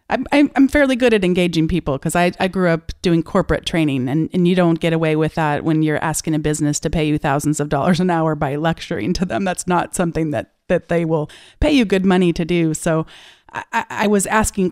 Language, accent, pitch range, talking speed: English, American, 160-185 Hz, 230 wpm